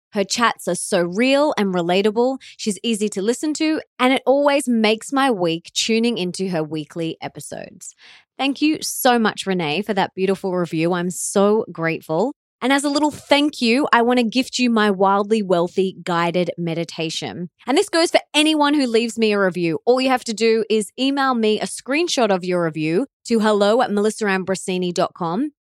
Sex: female